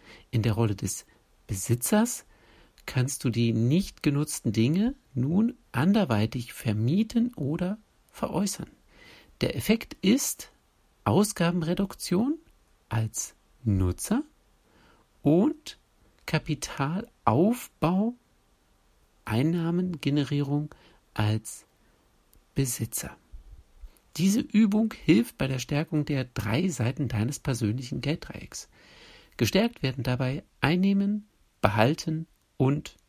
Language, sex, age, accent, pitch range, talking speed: German, male, 60-79, German, 115-185 Hz, 80 wpm